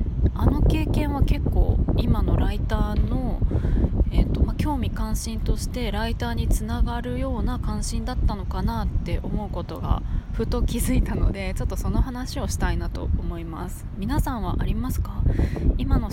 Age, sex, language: 20-39, female, Japanese